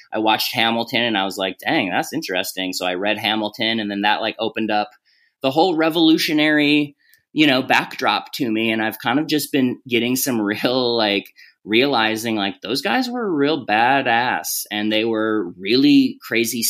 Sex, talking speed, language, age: male, 180 wpm, English, 20-39